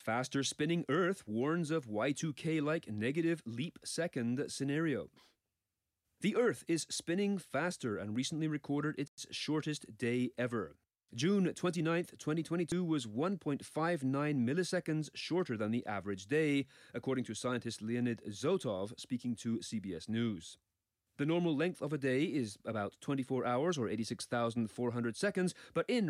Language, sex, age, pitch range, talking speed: English, male, 30-49, 120-160 Hz, 125 wpm